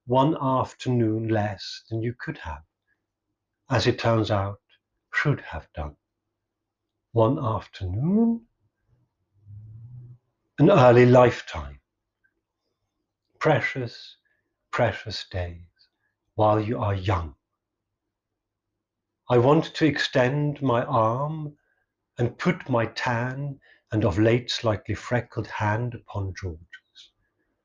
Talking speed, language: 95 wpm, English